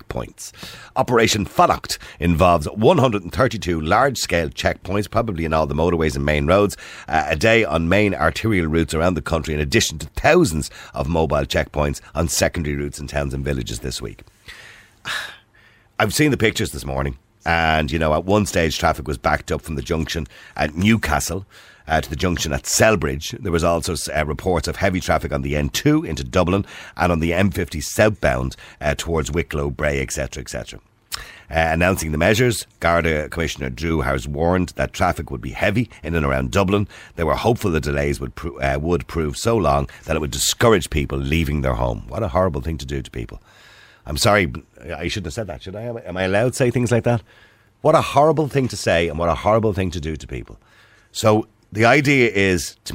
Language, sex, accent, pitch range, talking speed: English, male, Irish, 75-105 Hz, 200 wpm